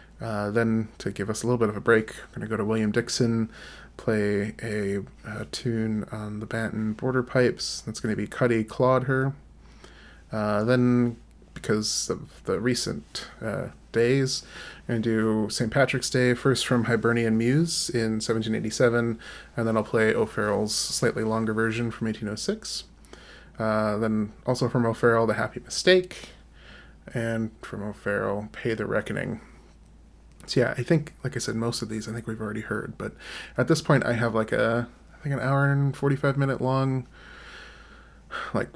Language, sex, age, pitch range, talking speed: English, male, 20-39, 105-125 Hz, 170 wpm